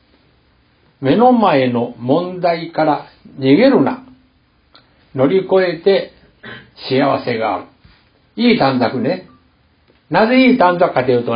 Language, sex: Japanese, male